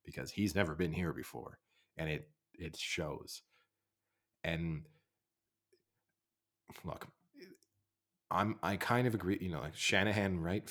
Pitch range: 80-95 Hz